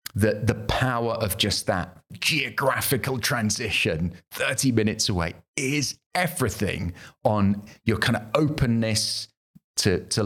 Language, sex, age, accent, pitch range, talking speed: English, male, 40-59, British, 90-125 Hz, 115 wpm